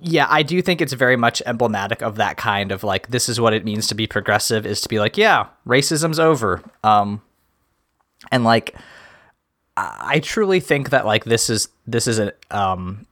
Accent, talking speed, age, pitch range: American, 190 wpm, 20-39, 110-135 Hz